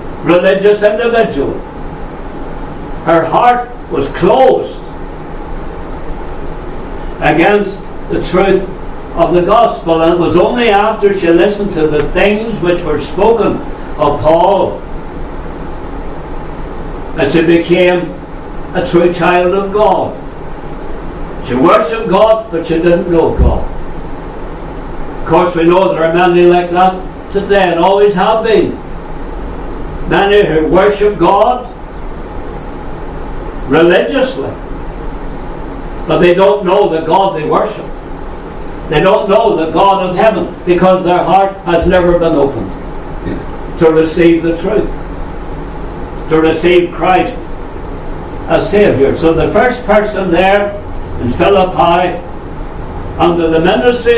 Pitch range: 165-200 Hz